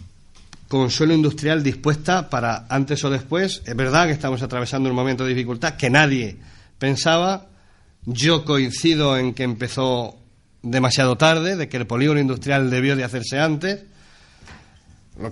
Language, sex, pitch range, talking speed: Spanish, male, 105-145 Hz, 145 wpm